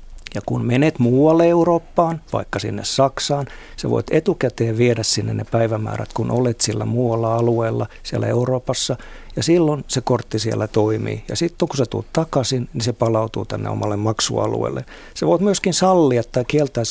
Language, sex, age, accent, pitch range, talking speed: Finnish, male, 50-69, native, 110-135 Hz, 165 wpm